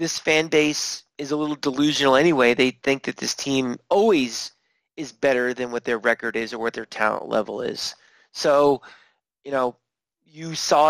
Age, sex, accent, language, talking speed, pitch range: 30-49, male, American, English, 175 wpm, 135-165 Hz